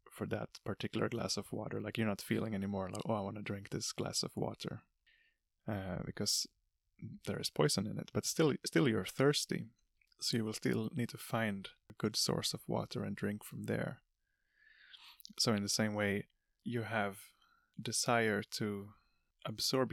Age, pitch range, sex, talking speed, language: 20-39, 105-120 Hz, male, 180 wpm, English